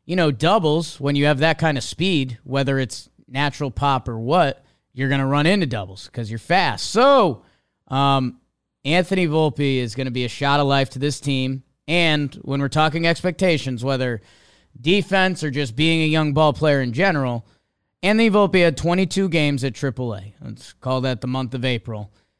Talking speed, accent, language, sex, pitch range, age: 190 wpm, American, English, male, 125-165 Hz, 20-39